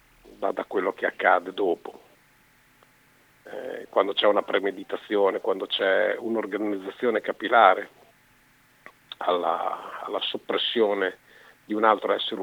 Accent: native